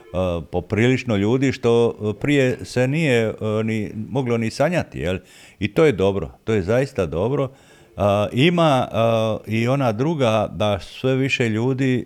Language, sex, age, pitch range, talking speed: Croatian, male, 50-69, 85-115 Hz, 180 wpm